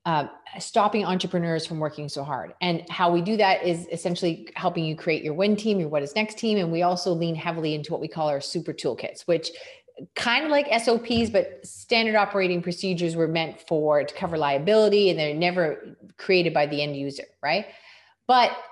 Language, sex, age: English, female, 30-49